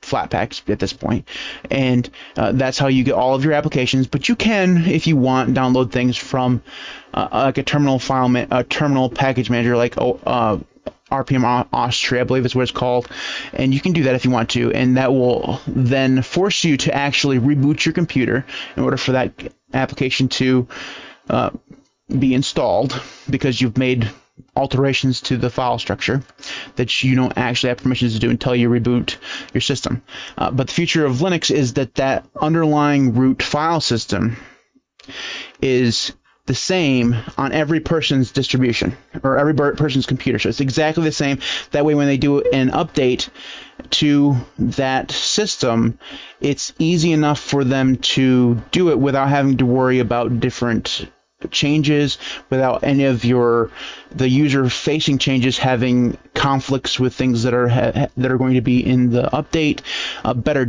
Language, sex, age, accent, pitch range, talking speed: English, male, 30-49, American, 125-145 Hz, 170 wpm